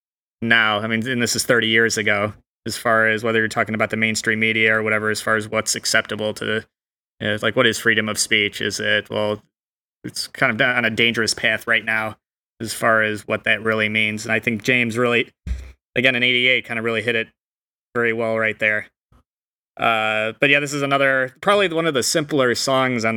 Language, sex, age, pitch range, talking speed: English, male, 20-39, 110-125 Hz, 220 wpm